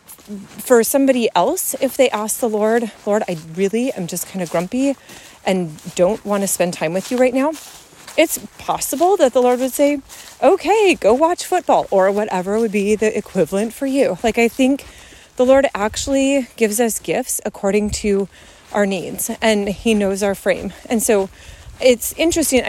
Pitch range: 200-260 Hz